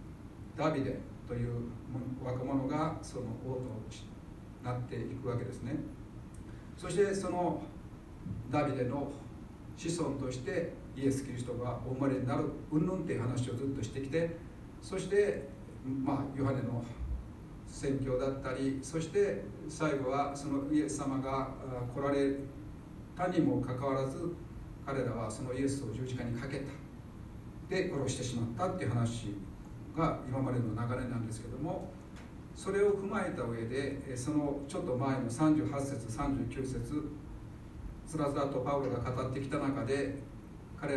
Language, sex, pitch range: Japanese, male, 120-150 Hz